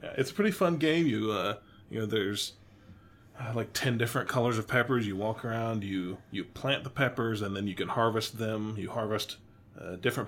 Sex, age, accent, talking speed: male, 30-49, American, 205 wpm